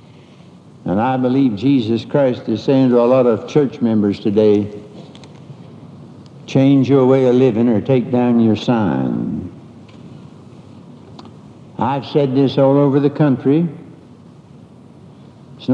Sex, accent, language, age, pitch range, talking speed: male, American, English, 60-79, 125-150 Hz, 120 wpm